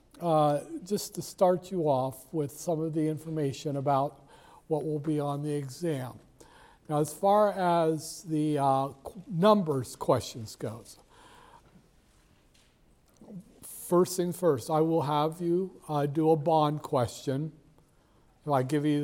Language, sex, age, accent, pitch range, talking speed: English, male, 60-79, American, 140-160 Hz, 135 wpm